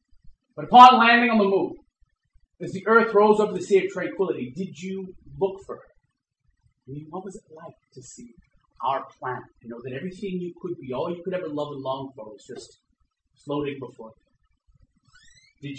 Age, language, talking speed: 30-49, English, 190 wpm